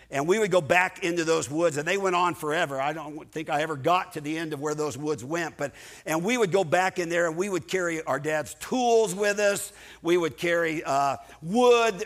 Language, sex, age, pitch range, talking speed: English, male, 50-69, 155-205 Hz, 245 wpm